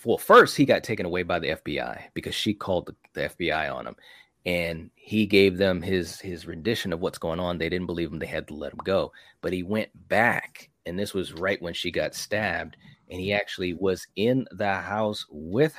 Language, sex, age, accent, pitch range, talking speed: English, male, 30-49, American, 85-115 Hz, 215 wpm